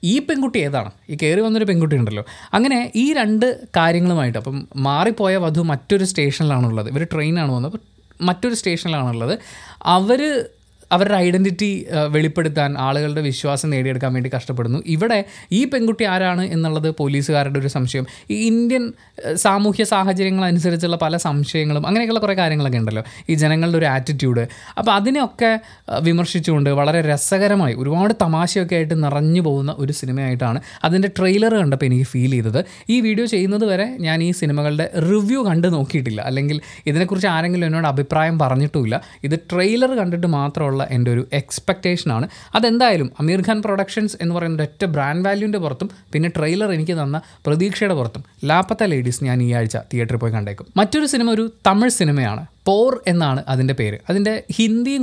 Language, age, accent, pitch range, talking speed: Malayalam, 20-39, native, 140-195 Hz, 140 wpm